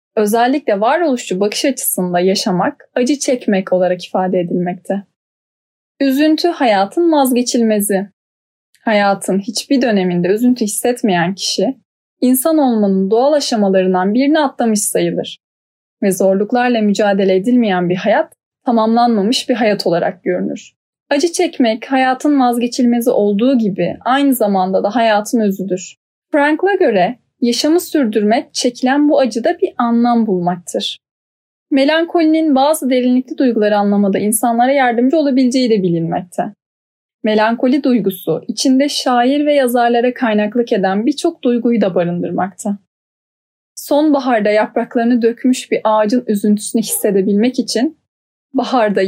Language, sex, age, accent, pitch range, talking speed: Turkish, female, 10-29, native, 200-265 Hz, 110 wpm